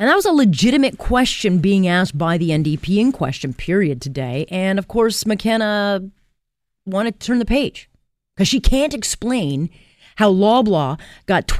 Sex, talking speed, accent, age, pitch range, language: female, 160 wpm, American, 40-59, 150-220 Hz, English